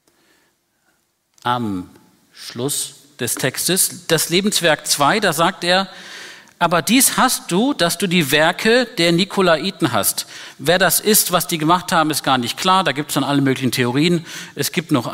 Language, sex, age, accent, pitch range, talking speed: German, male, 50-69, German, 135-185 Hz, 165 wpm